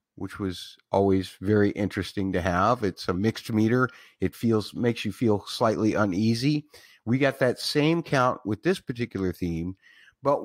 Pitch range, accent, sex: 105-135 Hz, American, male